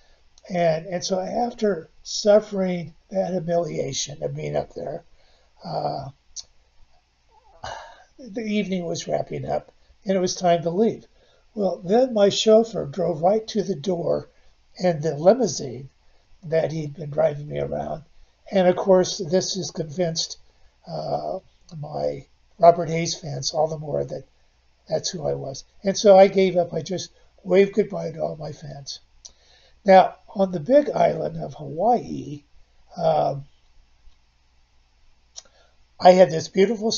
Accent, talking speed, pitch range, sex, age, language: American, 140 wpm, 150-195 Hz, male, 50-69, English